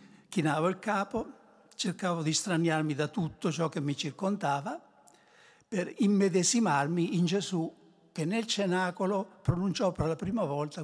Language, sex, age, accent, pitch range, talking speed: Italian, male, 60-79, native, 160-220 Hz, 135 wpm